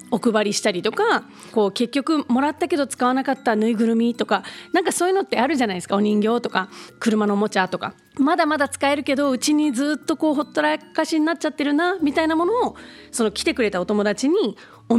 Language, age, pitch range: Japanese, 30-49, 210-300 Hz